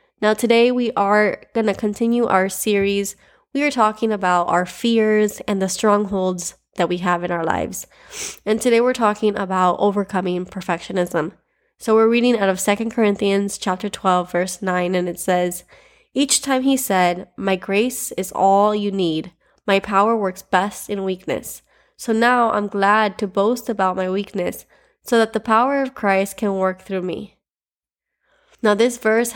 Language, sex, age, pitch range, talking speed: English, female, 20-39, 185-220 Hz, 170 wpm